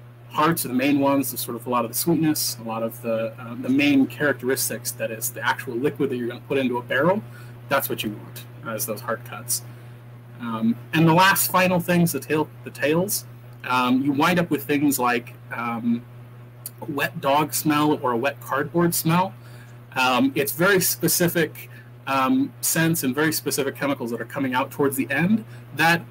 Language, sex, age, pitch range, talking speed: English, male, 30-49, 120-155 Hz, 200 wpm